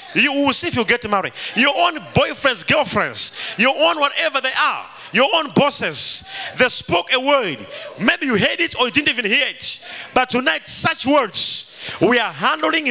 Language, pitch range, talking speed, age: English, 275-330 Hz, 185 wpm, 30-49